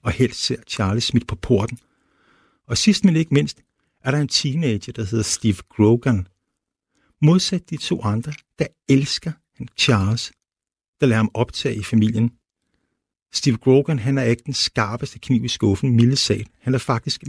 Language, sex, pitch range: Danish, male, 105-135 Hz